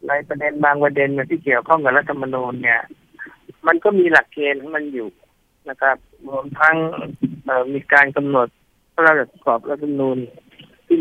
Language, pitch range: Thai, 140-165 Hz